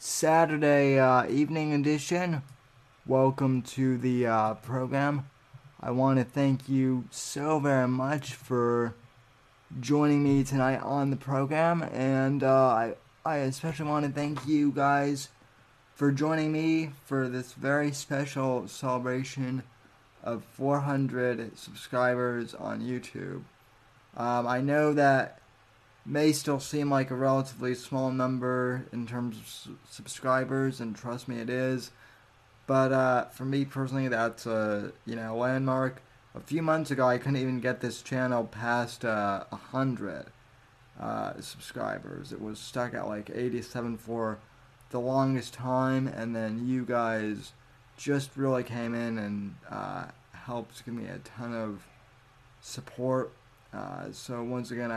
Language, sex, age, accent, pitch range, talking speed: English, male, 20-39, American, 120-135 Hz, 135 wpm